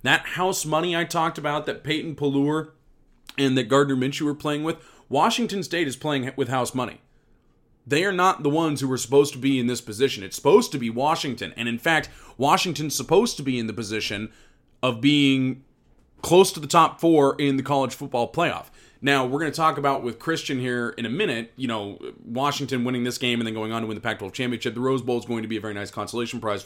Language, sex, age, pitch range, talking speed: English, male, 30-49, 120-155 Hz, 230 wpm